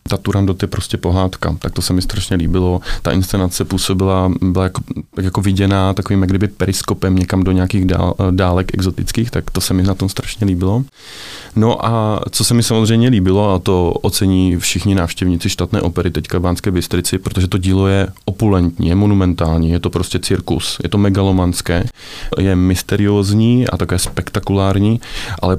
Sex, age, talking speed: male, 30-49, 175 wpm